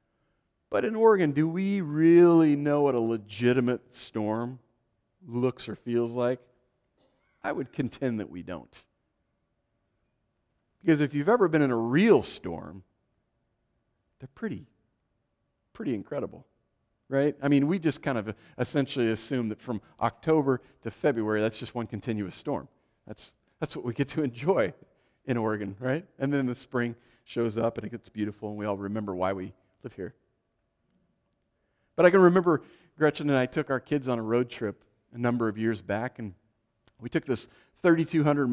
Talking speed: 165 wpm